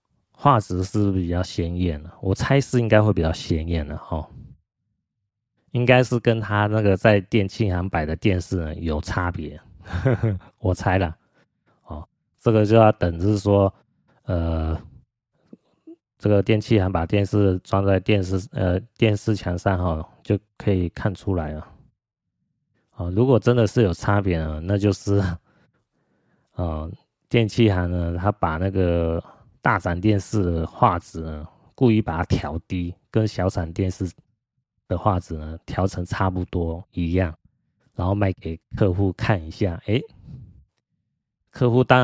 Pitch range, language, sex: 90-115 Hz, Chinese, male